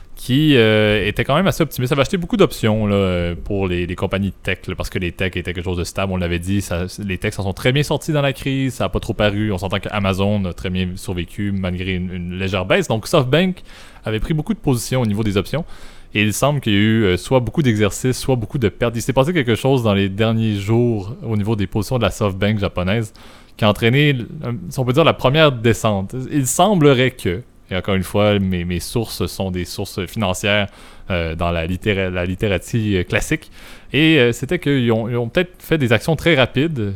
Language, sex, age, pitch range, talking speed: French, male, 20-39, 95-125 Hz, 235 wpm